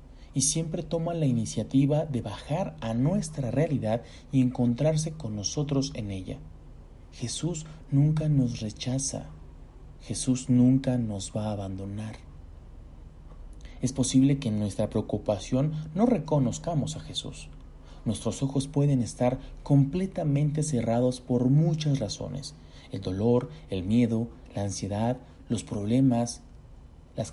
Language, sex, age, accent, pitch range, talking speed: Spanish, male, 40-59, Mexican, 100-135 Hz, 120 wpm